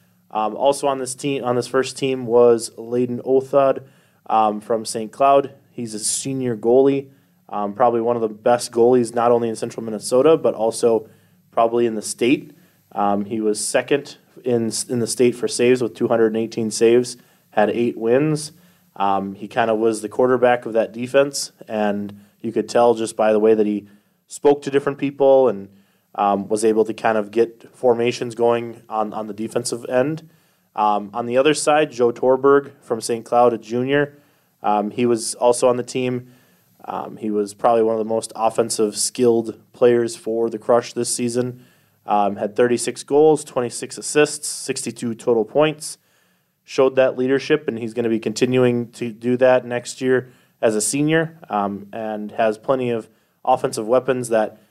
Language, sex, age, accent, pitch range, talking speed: English, male, 20-39, American, 110-130 Hz, 180 wpm